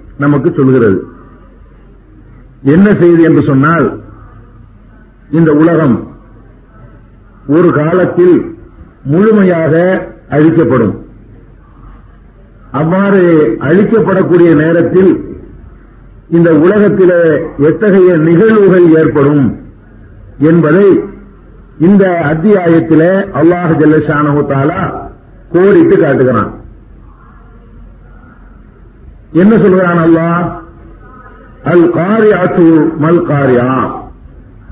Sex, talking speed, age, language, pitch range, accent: male, 55 wpm, 50-69, Tamil, 135-195 Hz, native